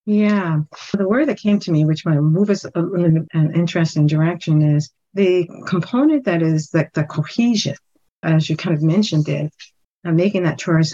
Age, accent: 50-69, American